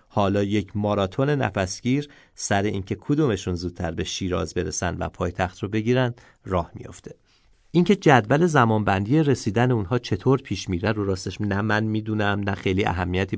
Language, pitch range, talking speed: Persian, 95-125 Hz, 150 wpm